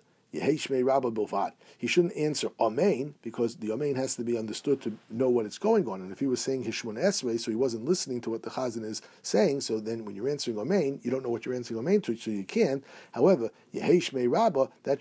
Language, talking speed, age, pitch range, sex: English, 215 wpm, 50-69, 110-135 Hz, male